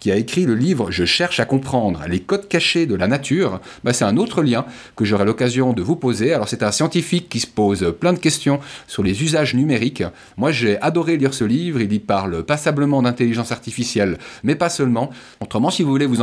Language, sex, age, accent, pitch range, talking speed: French, male, 30-49, French, 115-145 Hz, 230 wpm